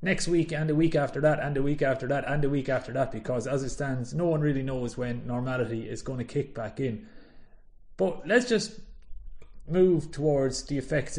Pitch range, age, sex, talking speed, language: 120-145 Hz, 30-49, male, 215 wpm, English